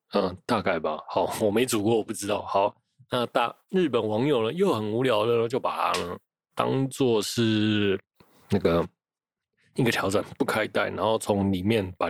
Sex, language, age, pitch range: male, Chinese, 20-39, 100-120 Hz